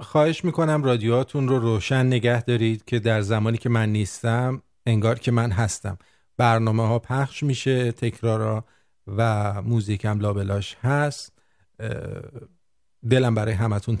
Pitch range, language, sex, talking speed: 110-130 Hz, Persian, male, 125 wpm